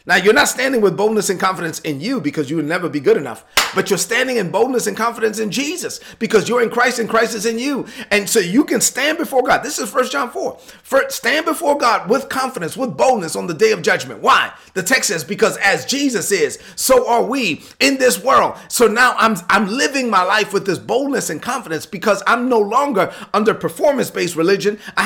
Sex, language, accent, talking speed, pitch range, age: male, English, American, 225 wpm, 185-240 Hz, 30-49